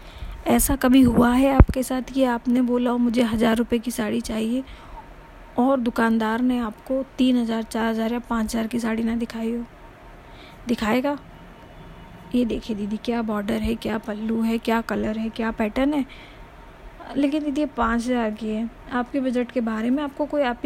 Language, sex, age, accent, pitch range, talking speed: Hindi, female, 20-39, native, 235-260 Hz, 180 wpm